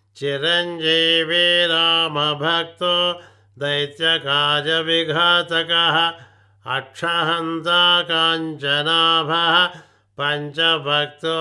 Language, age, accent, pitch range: Telugu, 50-69, native, 145-170 Hz